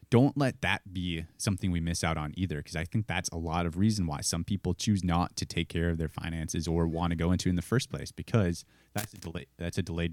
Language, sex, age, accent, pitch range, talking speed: English, male, 20-39, American, 80-100 Hz, 265 wpm